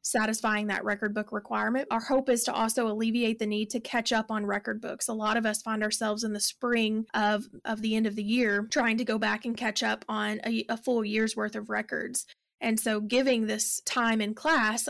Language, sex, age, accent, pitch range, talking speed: English, female, 20-39, American, 215-240 Hz, 230 wpm